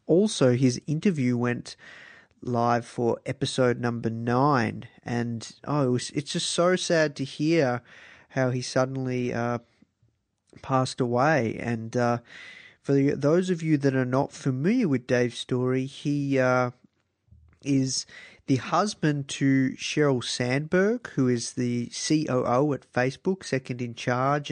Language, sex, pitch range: English, male, 125-155 Hz